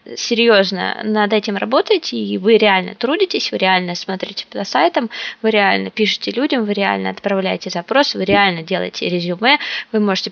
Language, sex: Russian, female